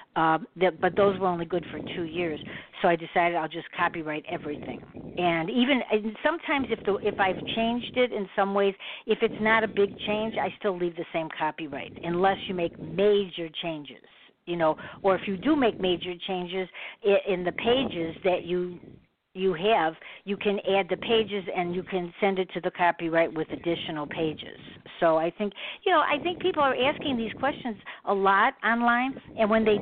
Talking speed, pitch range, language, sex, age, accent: 200 wpm, 175-220 Hz, English, female, 60-79, American